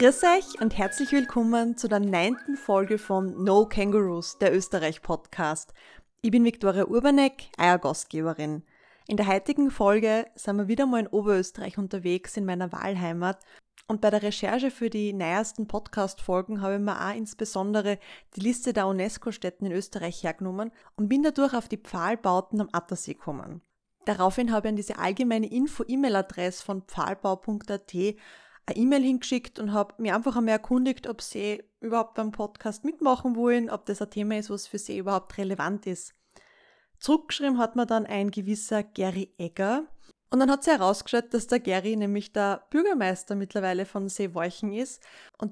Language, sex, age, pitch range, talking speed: German, female, 20-39, 195-235 Hz, 160 wpm